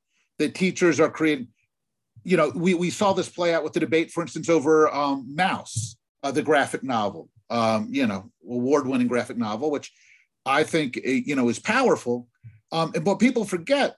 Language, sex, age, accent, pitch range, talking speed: English, male, 50-69, American, 135-195 Hz, 180 wpm